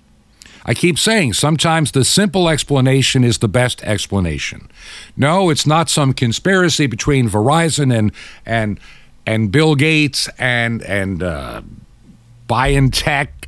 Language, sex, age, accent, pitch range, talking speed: English, male, 50-69, American, 115-175 Hz, 120 wpm